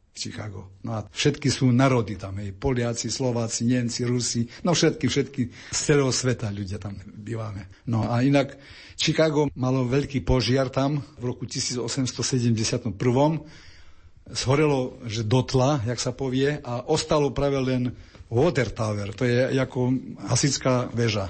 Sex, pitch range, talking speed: male, 115-130 Hz, 140 wpm